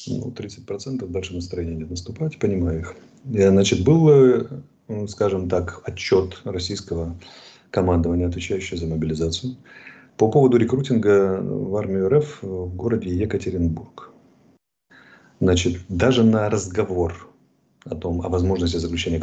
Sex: male